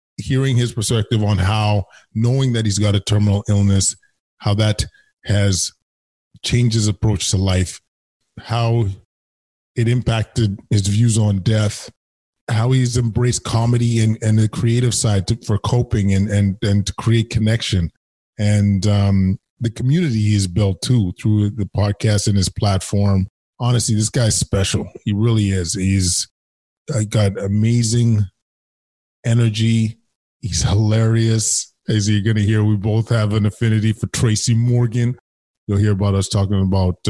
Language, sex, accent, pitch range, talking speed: English, male, American, 100-115 Hz, 145 wpm